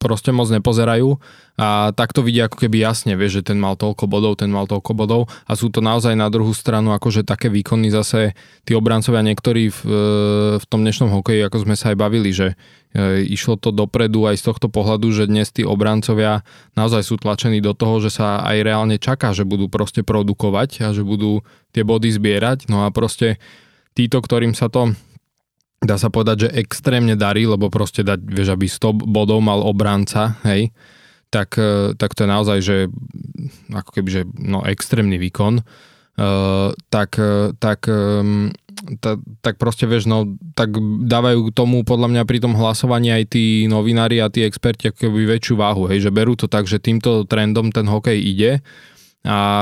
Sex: male